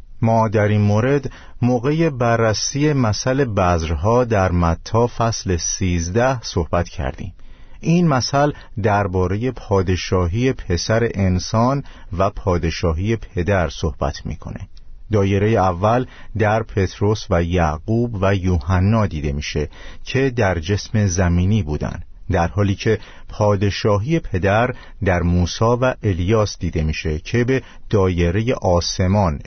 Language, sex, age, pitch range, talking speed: Persian, male, 50-69, 90-115 Hz, 115 wpm